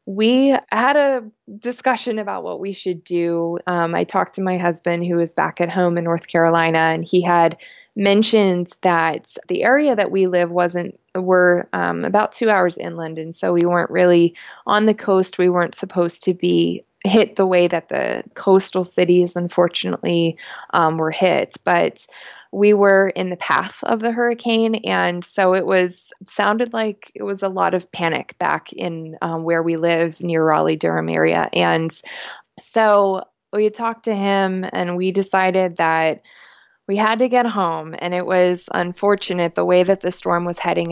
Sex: female